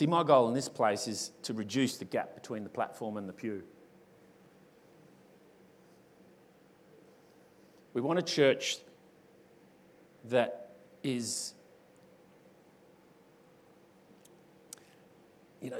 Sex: male